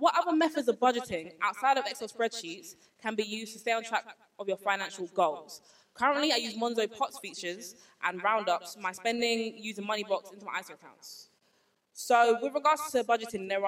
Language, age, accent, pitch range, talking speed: English, 20-39, British, 190-230 Hz, 185 wpm